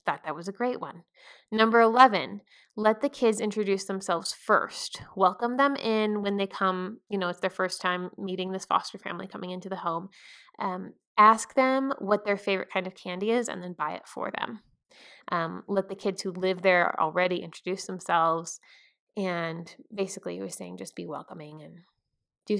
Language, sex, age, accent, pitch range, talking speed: English, female, 20-39, American, 180-215 Hz, 185 wpm